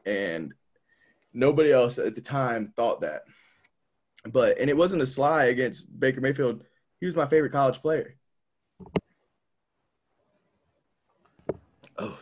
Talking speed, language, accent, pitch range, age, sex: 120 wpm, English, American, 115-155 Hz, 20-39, male